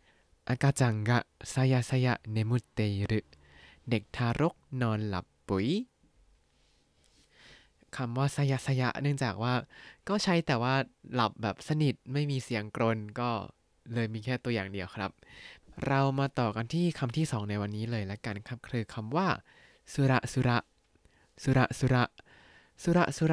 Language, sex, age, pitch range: Thai, male, 20-39, 110-140 Hz